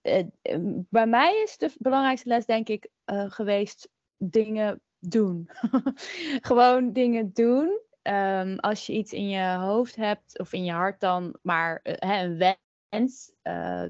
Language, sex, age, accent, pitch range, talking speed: English, female, 20-39, Dutch, 185-235 Hz, 140 wpm